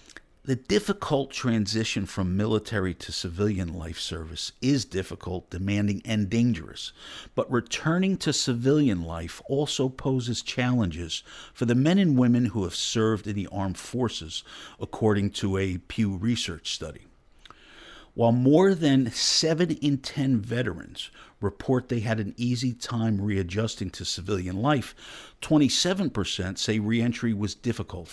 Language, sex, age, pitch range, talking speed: English, male, 50-69, 100-125 Hz, 130 wpm